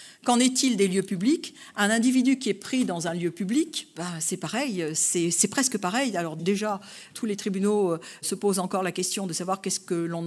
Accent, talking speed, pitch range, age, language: French, 205 wpm, 175-215 Hz, 50-69, French